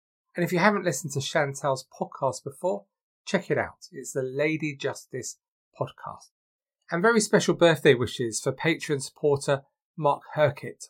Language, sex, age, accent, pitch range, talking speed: English, male, 30-49, British, 140-195 Hz, 150 wpm